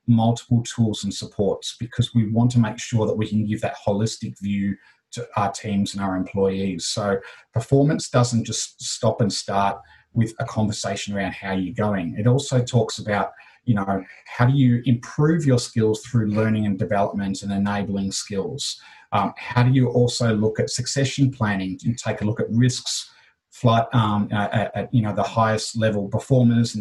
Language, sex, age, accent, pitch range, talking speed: English, male, 30-49, Australian, 100-120 Hz, 180 wpm